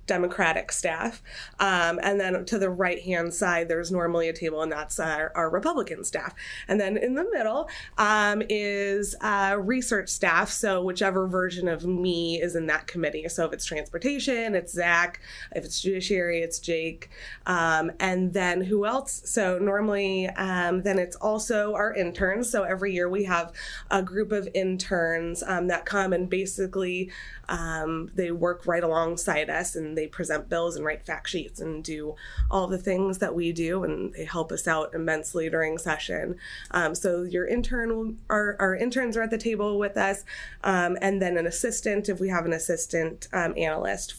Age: 20-39